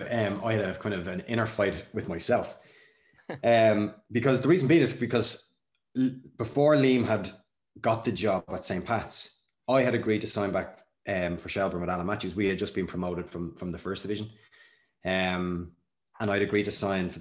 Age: 20-39